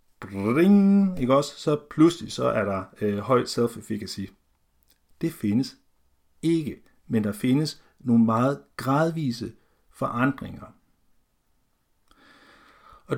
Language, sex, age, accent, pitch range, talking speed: Danish, male, 60-79, native, 105-145 Hz, 100 wpm